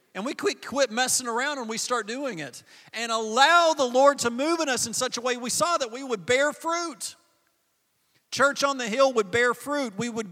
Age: 40-59